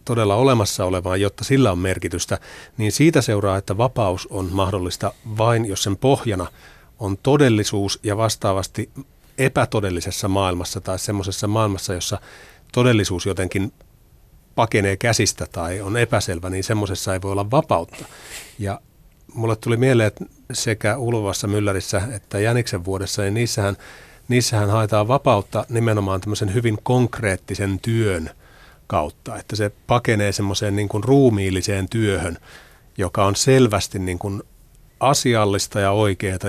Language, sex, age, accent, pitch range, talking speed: Finnish, male, 30-49, native, 95-115 Hz, 130 wpm